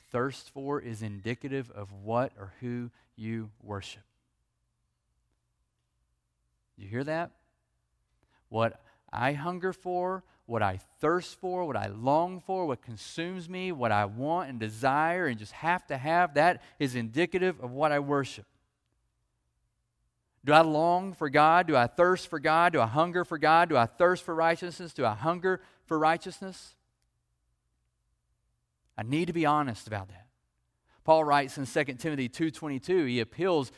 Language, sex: English, male